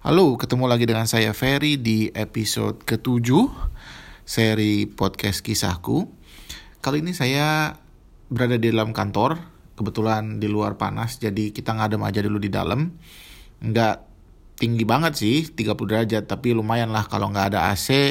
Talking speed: 145 wpm